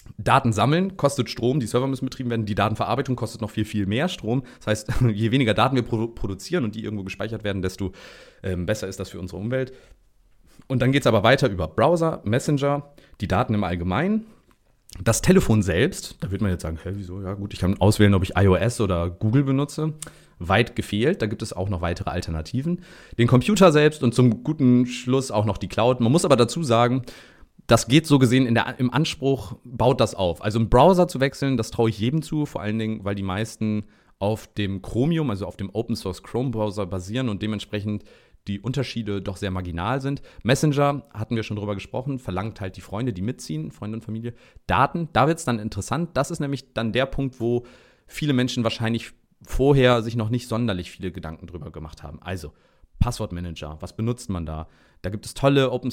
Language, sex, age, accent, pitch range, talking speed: German, male, 30-49, German, 100-130 Hz, 205 wpm